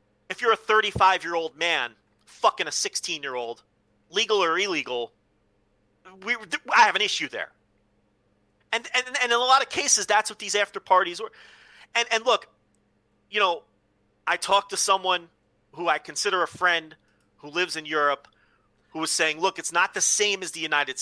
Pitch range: 150-195 Hz